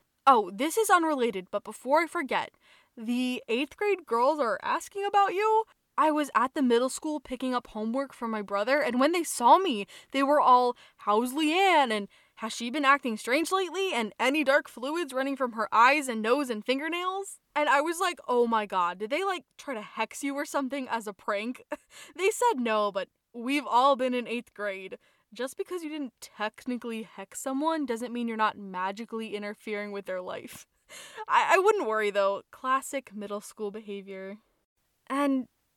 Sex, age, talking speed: female, 10-29, 190 wpm